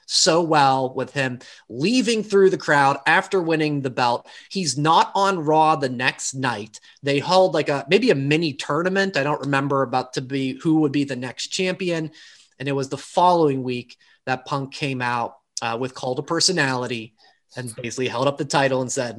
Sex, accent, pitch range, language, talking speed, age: male, American, 135-175 Hz, English, 195 wpm, 30-49